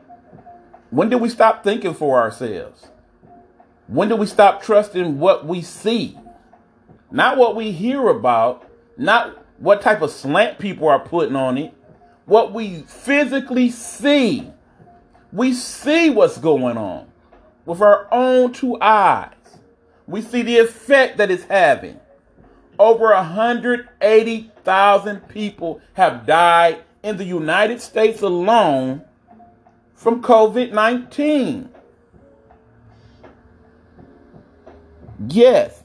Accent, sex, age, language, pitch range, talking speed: American, male, 40-59, English, 150-240 Hz, 105 wpm